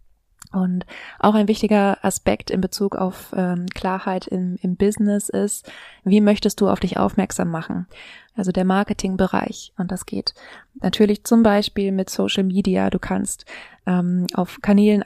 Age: 20-39